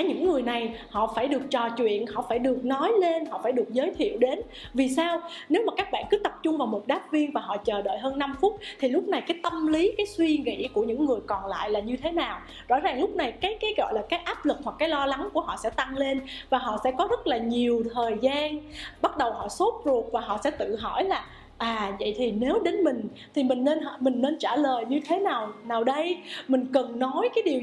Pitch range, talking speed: 245-345 Hz, 260 wpm